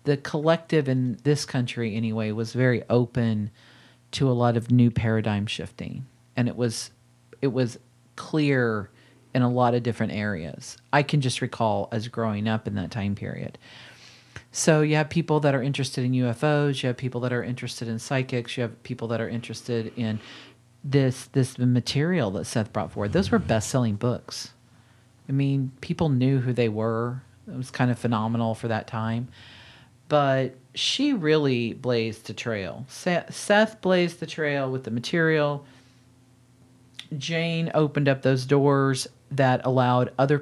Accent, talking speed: American, 165 wpm